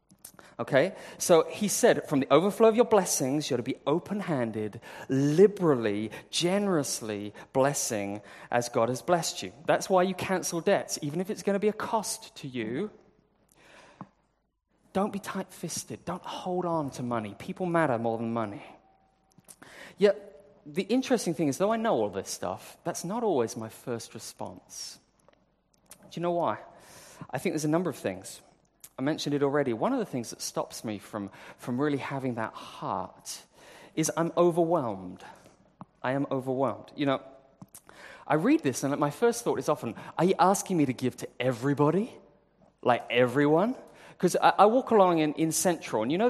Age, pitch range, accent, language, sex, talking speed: 30-49, 125-195 Hz, British, English, male, 170 wpm